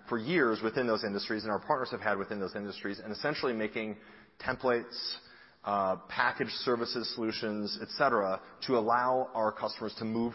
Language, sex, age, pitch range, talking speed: English, male, 30-49, 110-130 Hz, 160 wpm